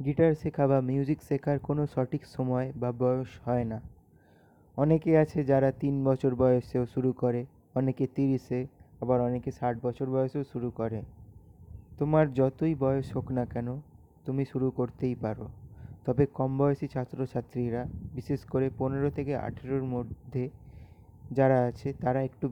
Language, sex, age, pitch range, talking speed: Bengali, male, 20-39, 120-140 Hz, 125 wpm